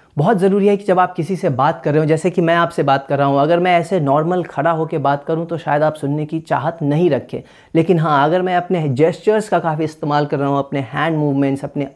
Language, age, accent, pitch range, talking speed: Hindi, 30-49, native, 145-190 Hz, 260 wpm